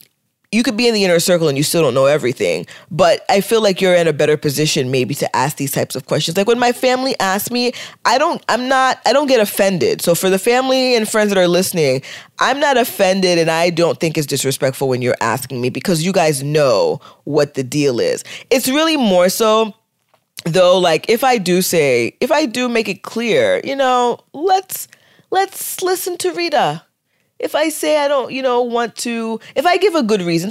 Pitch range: 170-275 Hz